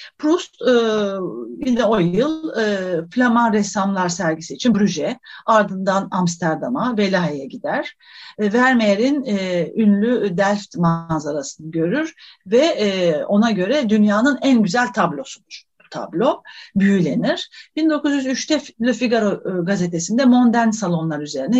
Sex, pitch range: female, 180-275 Hz